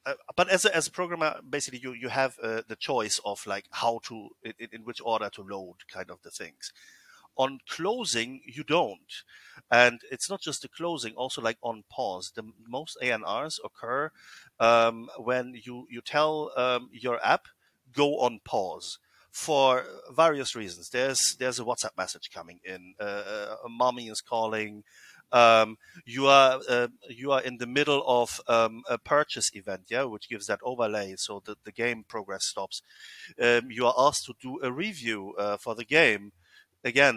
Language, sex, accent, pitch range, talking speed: English, male, German, 110-140 Hz, 175 wpm